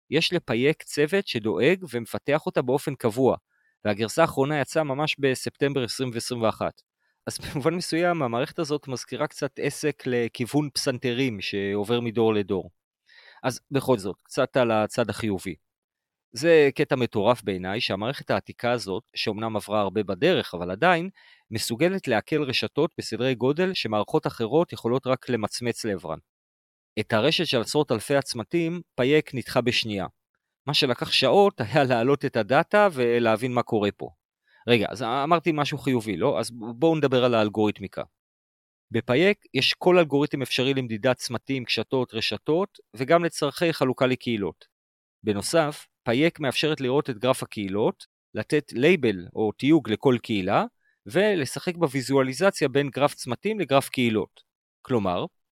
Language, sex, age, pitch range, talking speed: Hebrew, male, 30-49, 110-150 Hz, 135 wpm